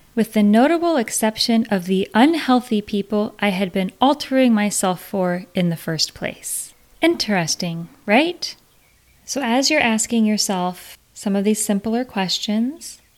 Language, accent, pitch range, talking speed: English, American, 190-245 Hz, 135 wpm